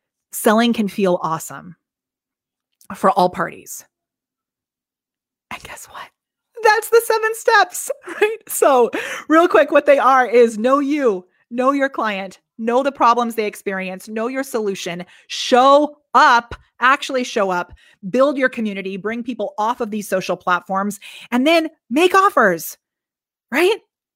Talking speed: 135 wpm